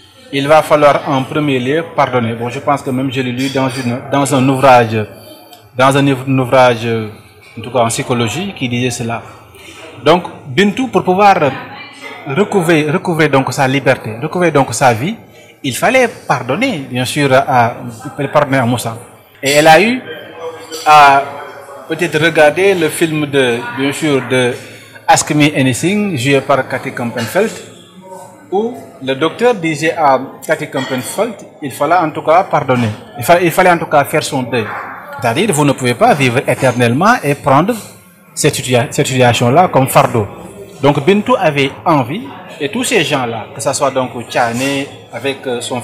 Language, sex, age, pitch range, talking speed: French, male, 30-49, 130-165 Hz, 165 wpm